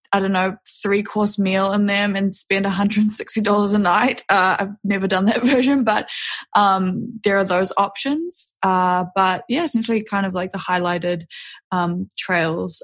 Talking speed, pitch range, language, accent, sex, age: 170 wpm, 185-220 Hz, English, Australian, female, 20-39